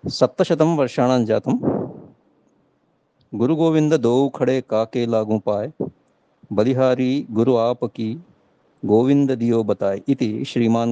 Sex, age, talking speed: male, 50-69, 75 wpm